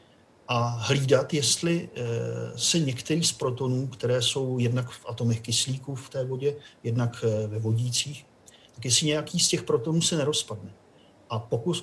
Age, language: 40-59, Czech